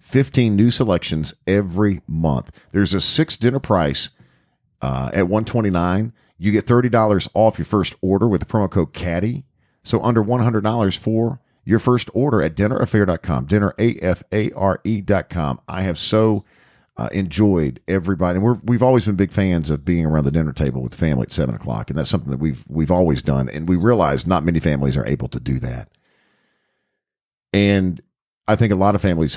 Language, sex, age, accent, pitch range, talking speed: English, male, 50-69, American, 80-110 Hz, 180 wpm